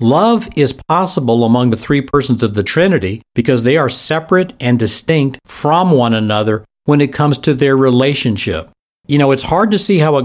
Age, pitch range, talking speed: 50-69, 115-155 Hz, 195 wpm